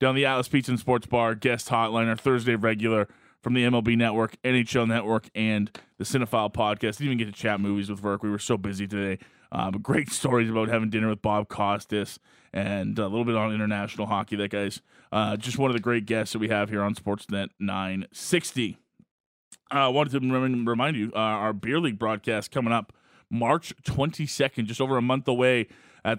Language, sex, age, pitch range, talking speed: English, male, 20-39, 115-150 Hz, 205 wpm